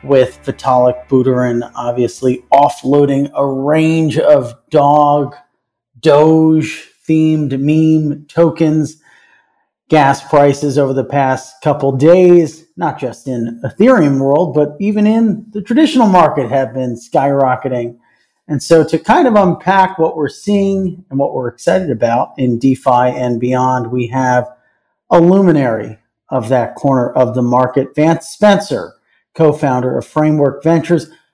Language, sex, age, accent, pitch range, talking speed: English, male, 40-59, American, 130-160 Hz, 130 wpm